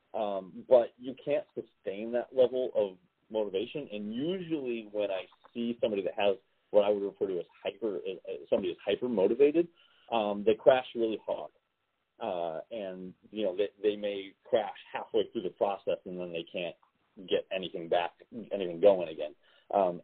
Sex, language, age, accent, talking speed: male, English, 30-49, American, 170 wpm